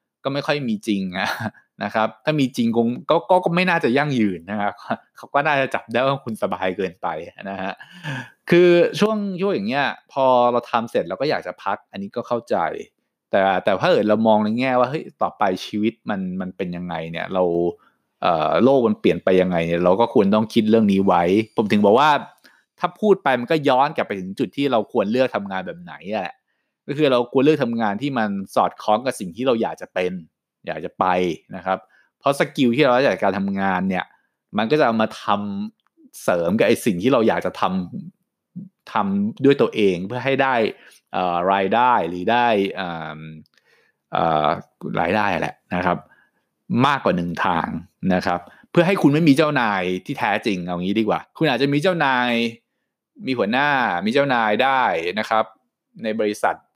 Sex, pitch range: male, 95-145 Hz